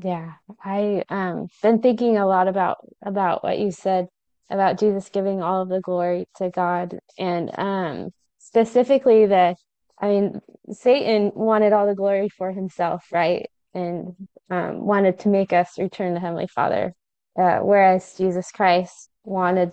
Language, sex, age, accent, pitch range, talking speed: English, female, 20-39, American, 180-210 Hz, 155 wpm